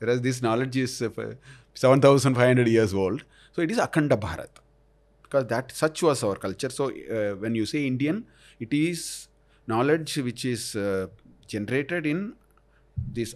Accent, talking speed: native, 150 wpm